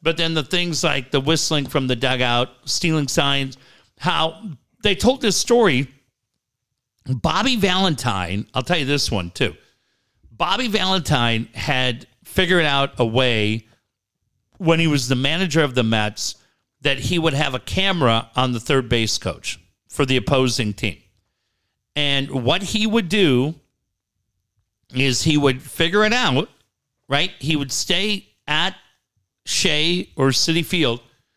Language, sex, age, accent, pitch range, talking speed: English, male, 50-69, American, 125-175 Hz, 145 wpm